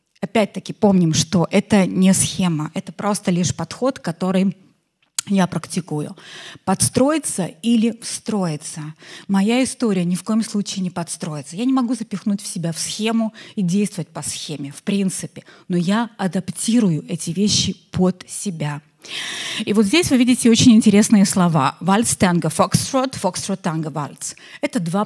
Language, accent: Russian, native